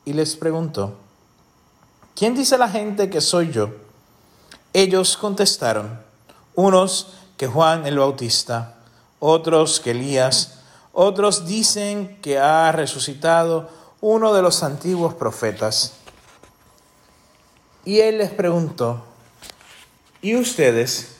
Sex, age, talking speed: male, 40-59, 105 wpm